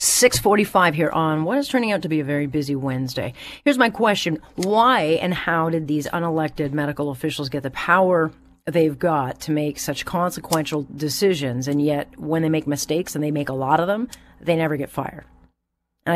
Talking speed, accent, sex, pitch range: 195 wpm, American, female, 145-180 Hz